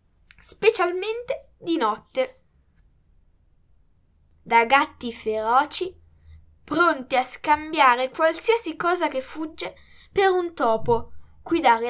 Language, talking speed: Italian, 85 wpm